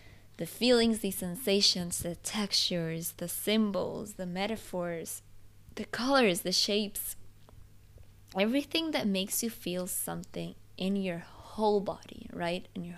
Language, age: English, 20-39